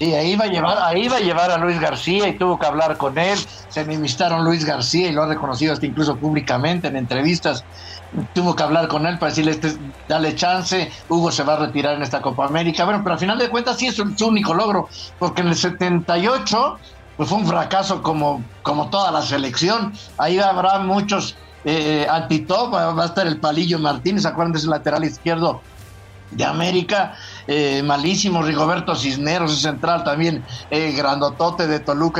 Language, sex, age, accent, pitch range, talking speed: English, male, 60-79, Mexican, 145-175 Hz, 185 wpm